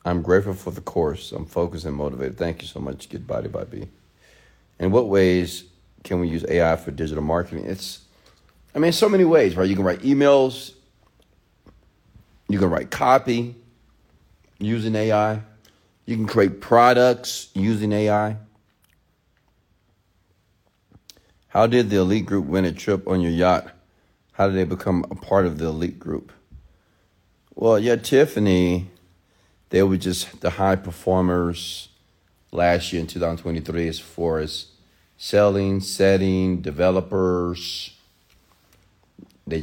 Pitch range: 85-100 Hz